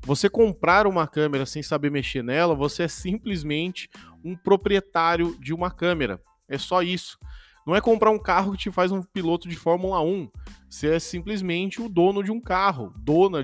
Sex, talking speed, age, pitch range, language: male, 185 wpm, 20-39, 140-185 Hz, Portuguese